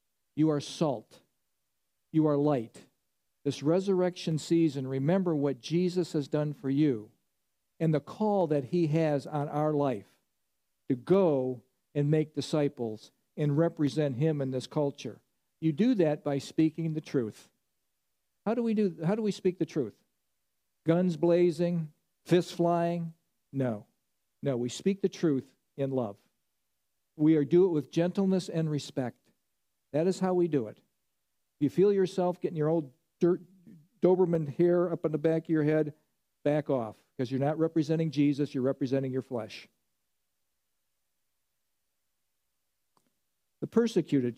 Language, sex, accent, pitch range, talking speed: English, male, American, 140-175 Hz, 140 wpm